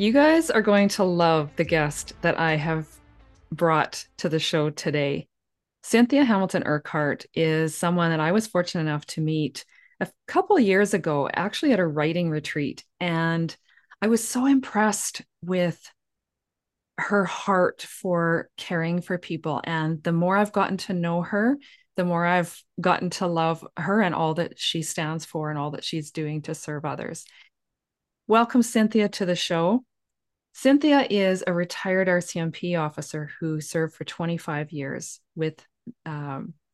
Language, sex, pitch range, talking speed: English, female, 160-210 Hz, 160 wpm